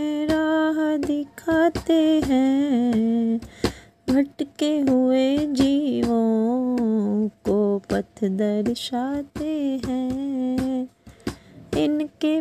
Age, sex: 20-39, female